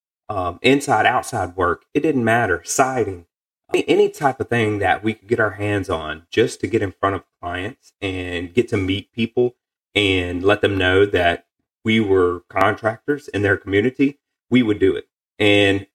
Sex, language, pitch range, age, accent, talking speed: male, English, 95-115 Hz, 30-49, American, 180 wpm